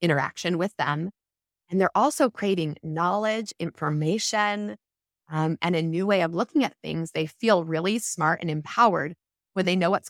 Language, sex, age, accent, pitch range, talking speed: English, female, 20-39, American, 165-210 Hz, 165 wpm